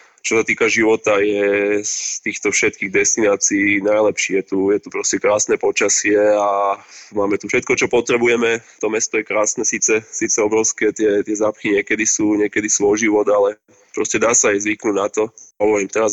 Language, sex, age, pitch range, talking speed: Slovak, male, 20-39, 105-115 Hz, 180 wpm